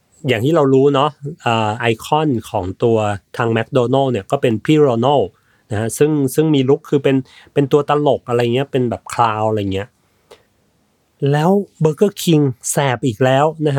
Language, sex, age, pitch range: Thai, male, 30-49, 115-155 Hz